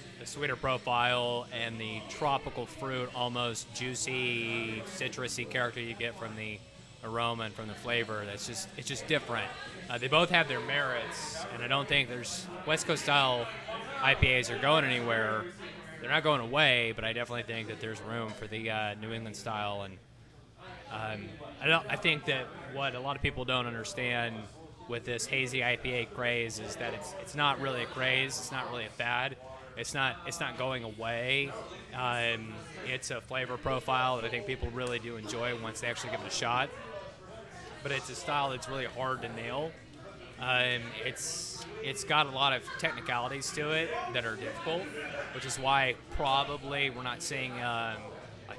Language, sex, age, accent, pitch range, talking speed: English, male, 20-39, American, 115-135 Hz, 185 wpm